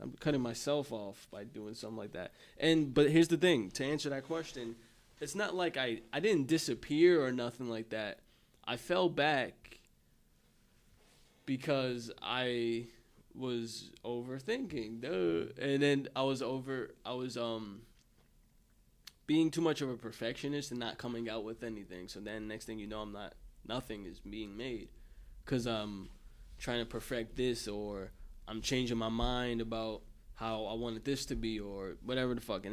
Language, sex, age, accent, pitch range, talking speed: English, male, 20-39, American, 110-130 Hz, 170 wpm